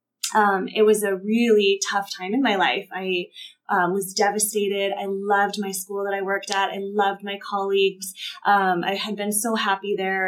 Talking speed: 195 wpm